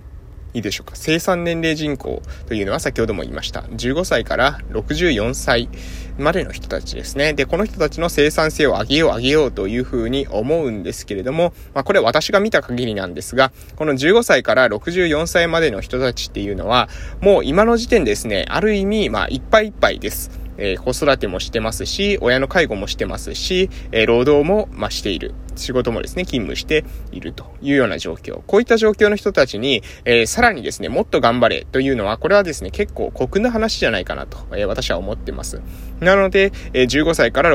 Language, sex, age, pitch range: Japanese, male, 20-39, 125-200 Hz